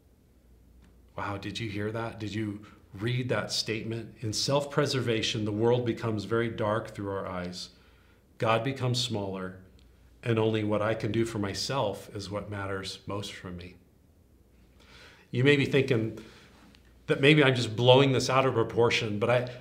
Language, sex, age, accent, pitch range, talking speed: English, male, 40-59, American, 105-130 Hz, 160 wpm